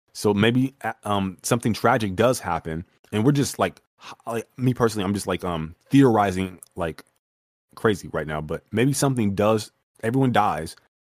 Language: English